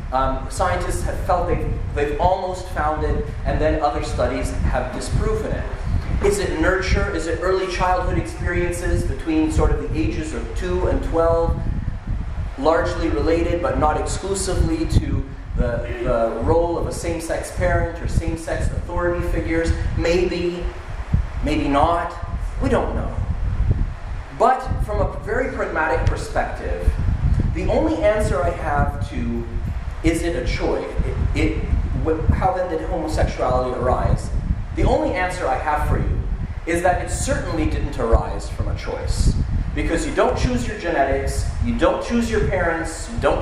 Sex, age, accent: male, 30-49, American